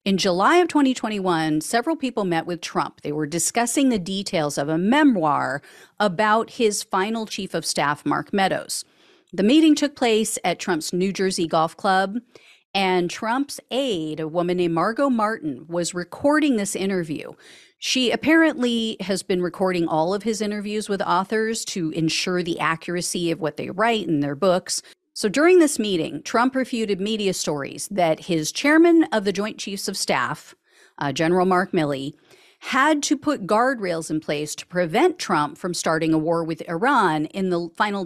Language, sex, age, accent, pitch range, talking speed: English, female, 40-59, American, 170-240 Hz, 170 wpm